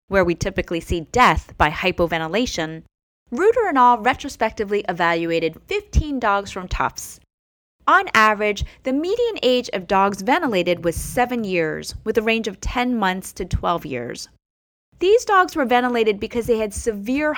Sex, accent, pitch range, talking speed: female, American, 175-275 Hz, 150 wpm